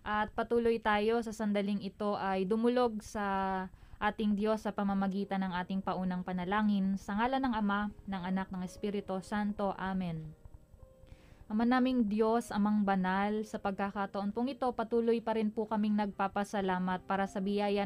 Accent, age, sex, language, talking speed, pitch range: native, 20-39, female, Filipino, 150 wpm, 200-225 Hz